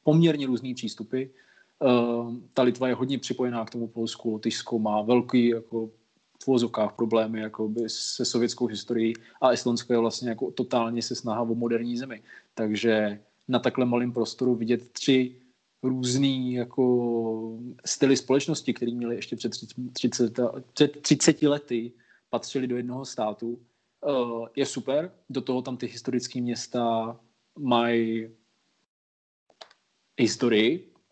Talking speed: 125 wpm